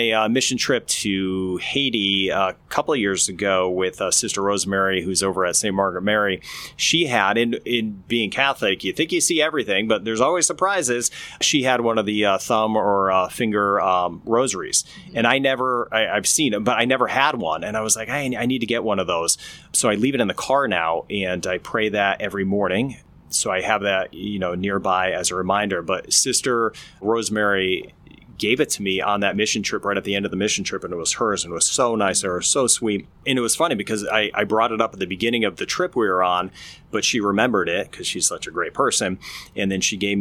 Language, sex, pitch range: English, male, 95-115 Hz